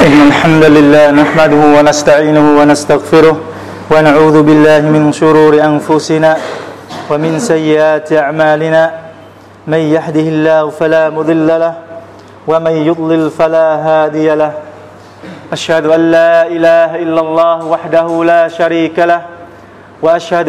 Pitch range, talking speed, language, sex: 160-170 Hz, 70 wpm, Vietnamese, male